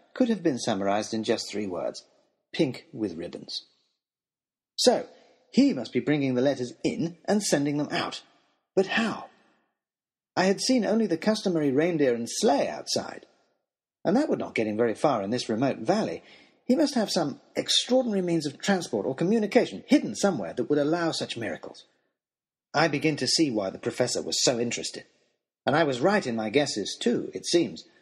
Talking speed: 180 wpm